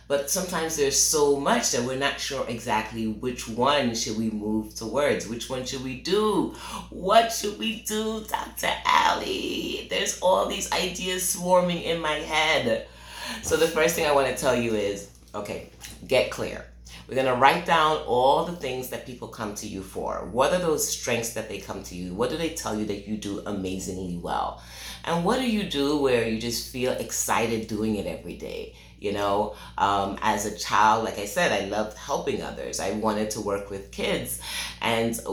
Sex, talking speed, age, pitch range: female, 190 wpm, 30-49, 105-145 Hz